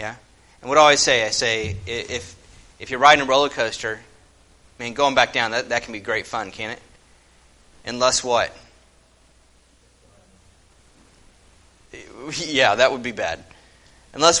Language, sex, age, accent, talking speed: English, male, 30-49, American, 150 wpm